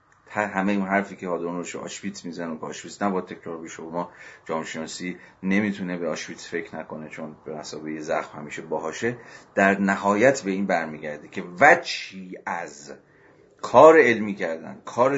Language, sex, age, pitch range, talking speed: Persian, male, 40-59, 85-110 Hz, 160 wpm